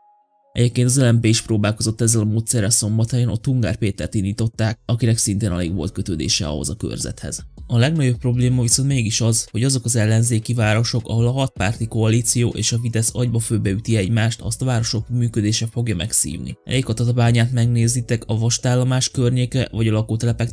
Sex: male